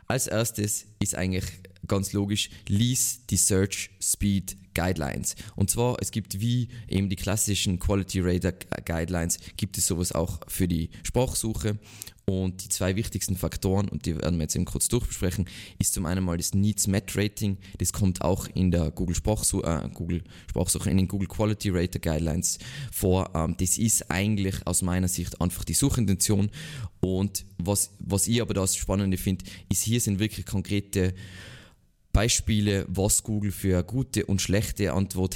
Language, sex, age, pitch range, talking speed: German, male, 20-39, 90-105 Hz, 165 wpm